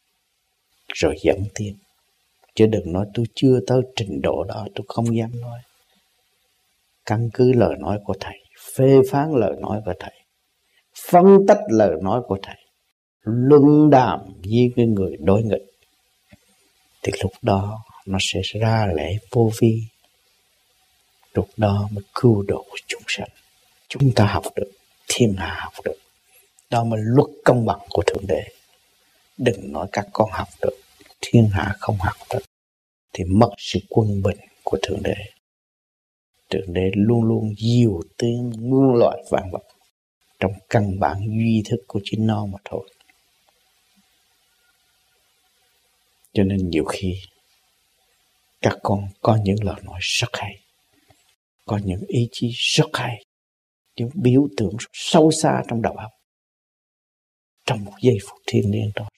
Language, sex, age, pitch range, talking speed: Vietnamese, male, 60-79, 100-120 Hz, 145 wpm